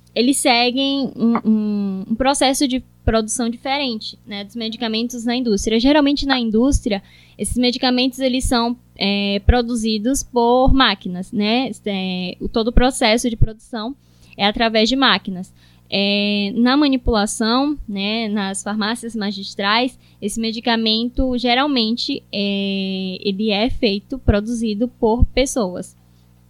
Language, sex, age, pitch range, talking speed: Portuguese, female, 10-29, 200-245 Hz, 105 wpm